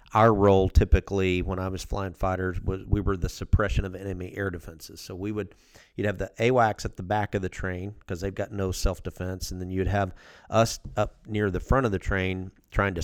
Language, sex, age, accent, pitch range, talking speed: English, male, 40-59, American, 90-105 Hz, 225 wpm